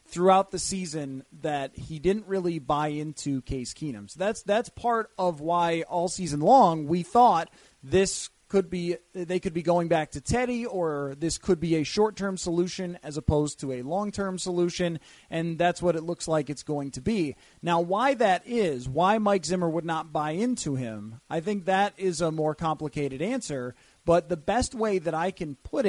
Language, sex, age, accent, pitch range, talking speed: English, male, 30-49, American, 160-195 Hz, 195 wpm